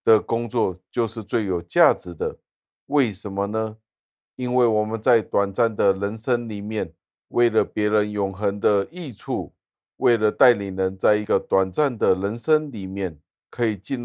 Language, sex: Chinese, male